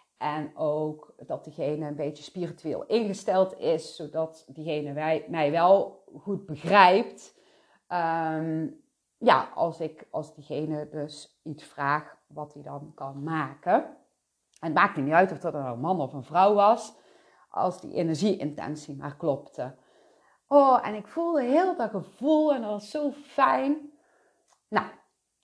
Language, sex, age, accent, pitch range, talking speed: Dutch, female, 30-49, Dutch, 155-215 Hz, 140 wpm